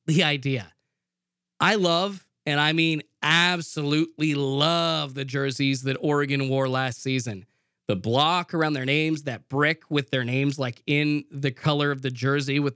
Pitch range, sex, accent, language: 140-185 Hz, male, American, English